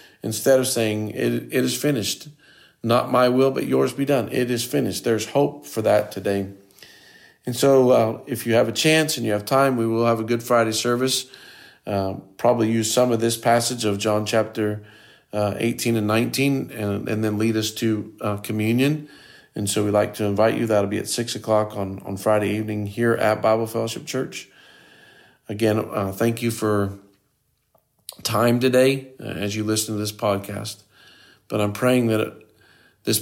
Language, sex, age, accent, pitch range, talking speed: English, male, 40-59, American, 100-115 Hz, 185 wpm